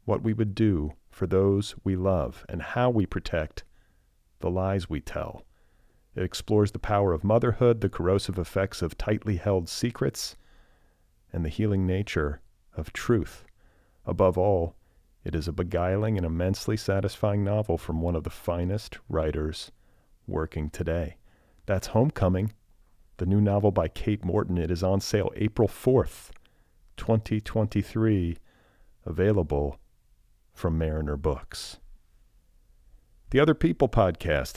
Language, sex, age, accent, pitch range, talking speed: English, male, 40-59, American, 85-105 Hz, 130 wpm